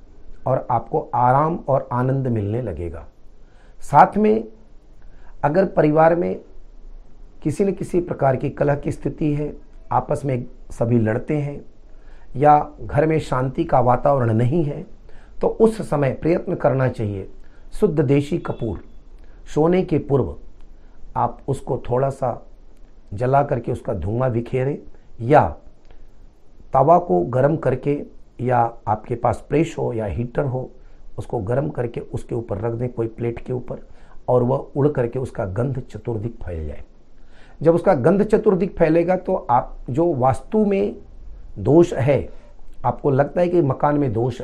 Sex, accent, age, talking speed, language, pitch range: male, native, 40-59, 145 wpm, Hindi, 115-160 Hz